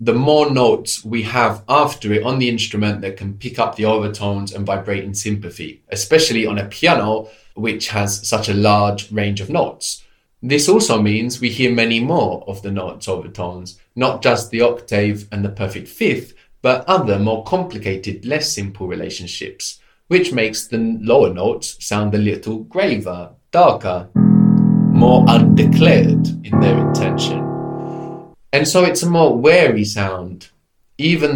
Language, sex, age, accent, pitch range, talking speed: English, male, 20-39, British, 105-145 Hz, 155 wpm